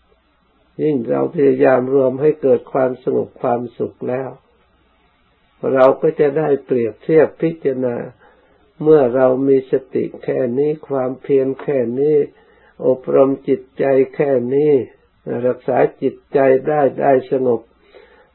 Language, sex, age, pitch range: Thai, male, 60-79, 120-155 Hz